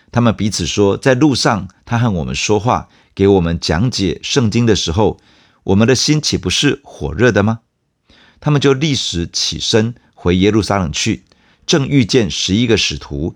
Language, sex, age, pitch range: Chinese, male, 50-69, 90-120 Hz